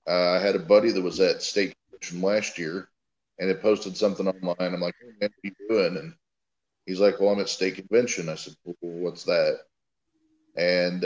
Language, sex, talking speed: English, male, 200 wpm